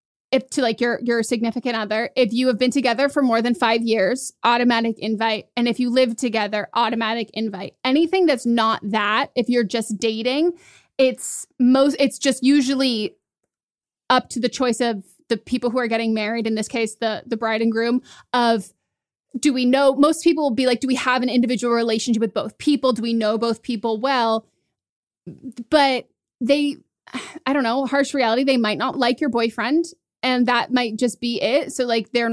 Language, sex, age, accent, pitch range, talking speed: English, female, 20-39, American, 225-260 Hz, 195 wpm